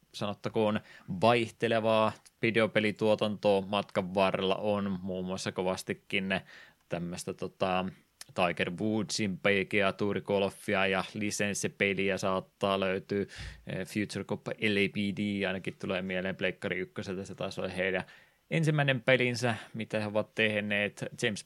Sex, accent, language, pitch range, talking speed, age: male, native, Finnish, 95-110 Hz, 105 wpm, 20-39